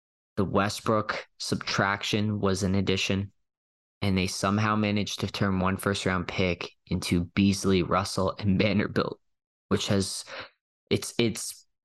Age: 20-39